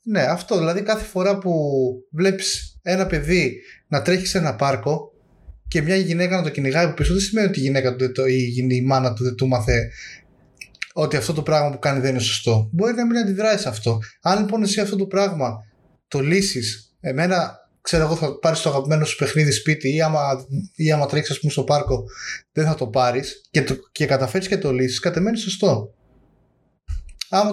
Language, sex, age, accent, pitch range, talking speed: Greek, male, 20-39, native, 130-190 Hz, 195 wpm